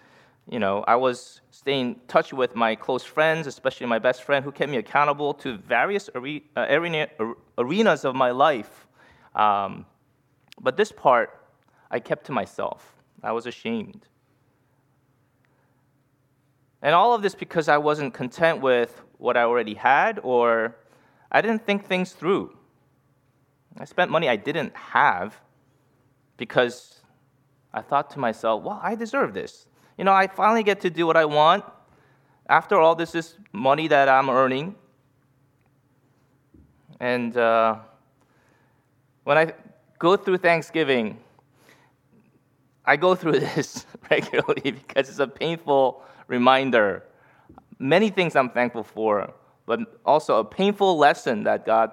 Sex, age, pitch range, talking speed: male, 20-39, 125-160 Hz, 135 wpm